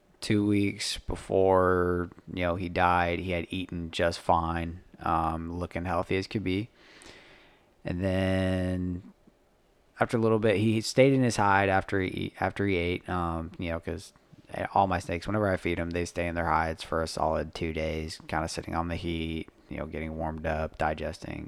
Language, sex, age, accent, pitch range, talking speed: English, male, 20-39, American, 85-100 Hz, 185 wpm